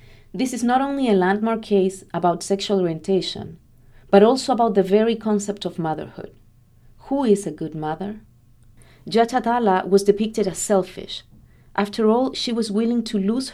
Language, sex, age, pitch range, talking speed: English, female, 40-59, 165-220 Hz, 160 wpm